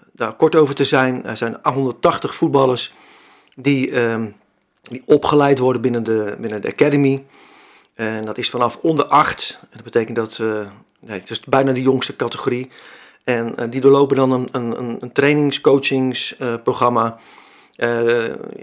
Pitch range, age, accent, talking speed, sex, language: 120-140 Hz, 50-69, Dutch, 150 wpm, male, Dutch